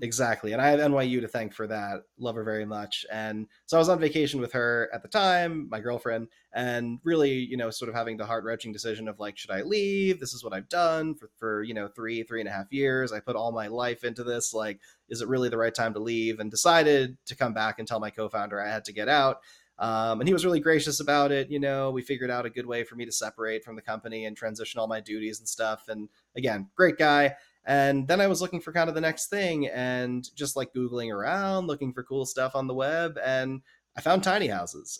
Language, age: English, 30-49